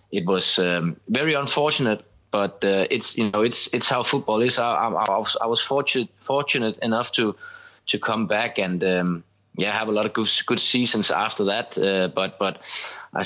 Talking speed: 190 wpm